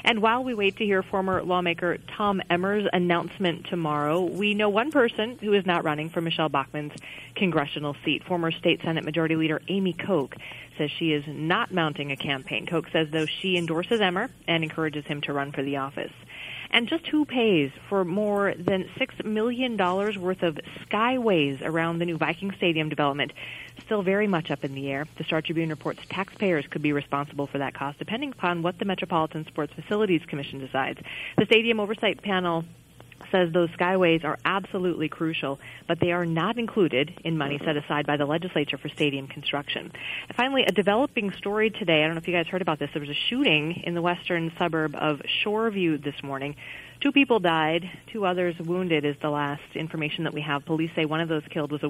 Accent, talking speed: American, 200 wpm